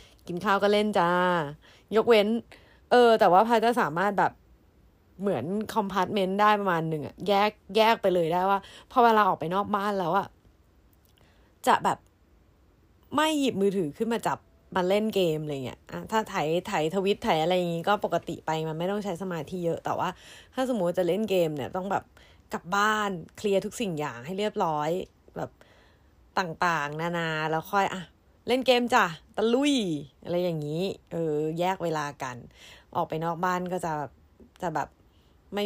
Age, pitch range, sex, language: 20-39, 160-200 Hz, female, Thai